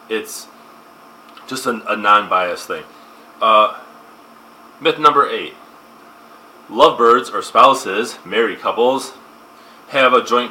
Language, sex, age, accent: English, male, 30-49, American